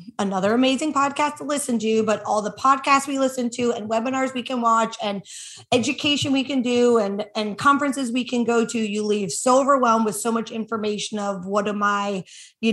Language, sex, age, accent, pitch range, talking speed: English, female, 20-39, American, 210-255 Hz, 205 wpm